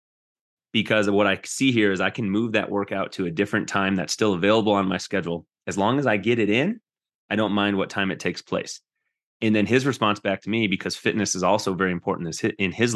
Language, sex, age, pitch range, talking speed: English, male, 30-49, 95-110 Hz, 240 wpm